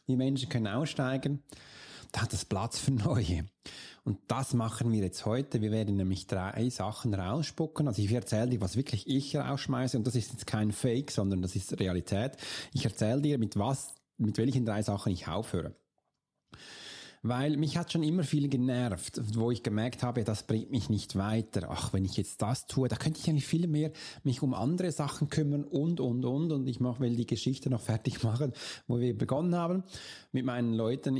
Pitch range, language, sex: 110-145 Hz, German, male